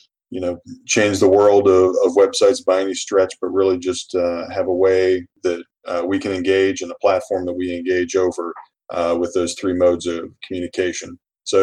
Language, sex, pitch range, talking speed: English, male, 95-110 Hz, 195 wpm